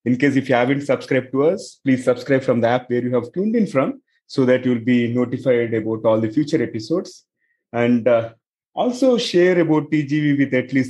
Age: 30-49